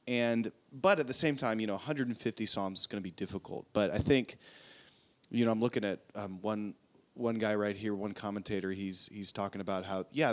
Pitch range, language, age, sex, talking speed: 100-120 Hz, English, 30-49, male, 215 wpm